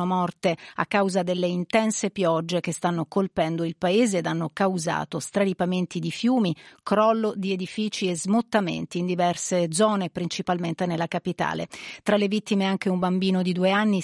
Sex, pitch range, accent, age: female, 175-210 Hz, native, 40-59